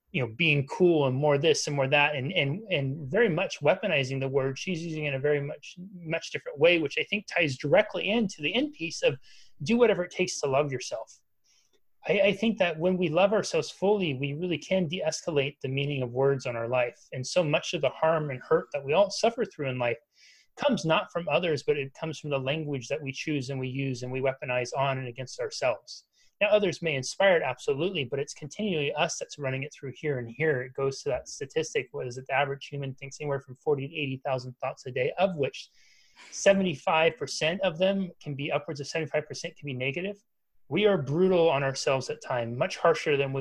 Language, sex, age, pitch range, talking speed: English, male, 30-49, 135-180 Hz, 225 wpm